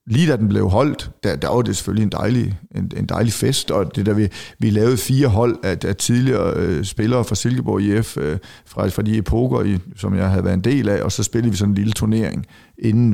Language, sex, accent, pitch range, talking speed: Danish, male, native, 100-120 Hz, 245 wpm